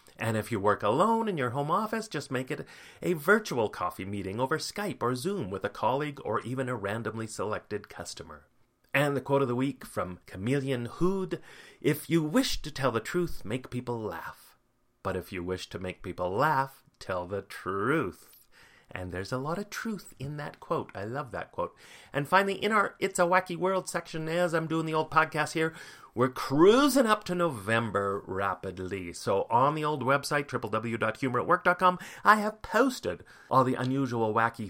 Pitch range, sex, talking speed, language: 110-180 Hz, male, 185 wpm, English